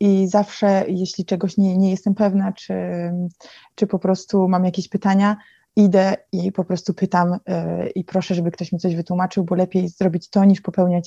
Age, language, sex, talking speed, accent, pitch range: 20-39, Polish, female, 180 wpm, native, 180-200 Hz